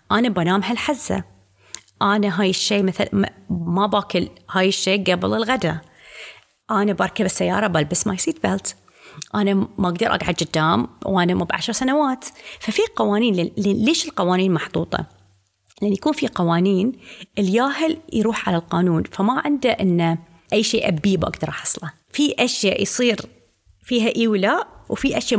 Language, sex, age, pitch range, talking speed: Arabic, female, 30-49, 180-245 Hz, 140 wpm